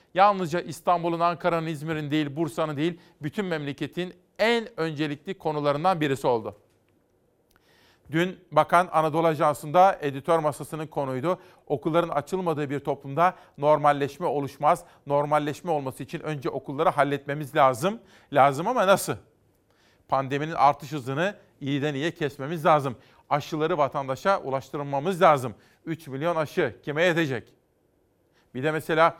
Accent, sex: native, male